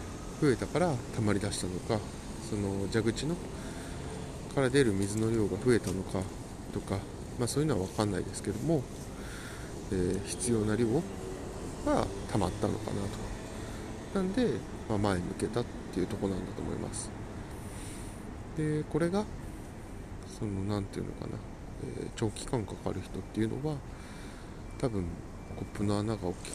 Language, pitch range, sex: Japanese, 95-110 Hz, male